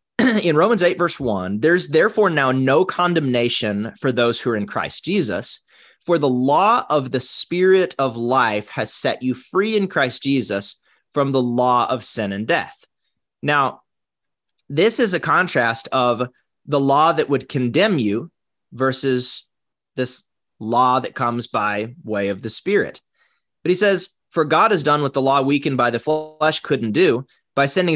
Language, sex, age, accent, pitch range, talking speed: English, male, 20-39, American, 120-155 Hz, 170 wpm